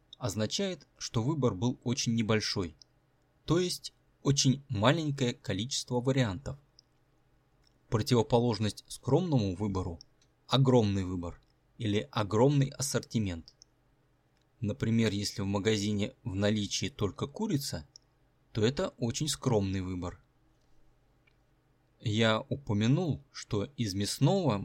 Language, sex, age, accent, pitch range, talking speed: Russian, male, 20-39, native, 105-140 Hz, 95 wpm